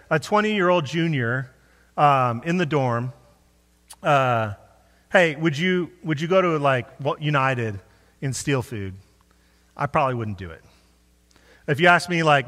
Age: 30-49